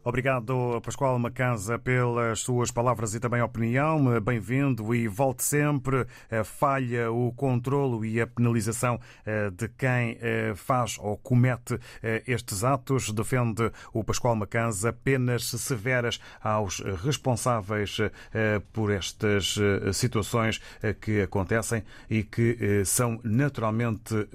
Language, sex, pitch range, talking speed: Portuguese, male, 110-130 Hz, 105 wpm